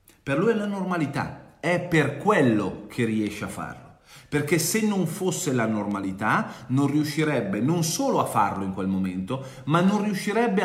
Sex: male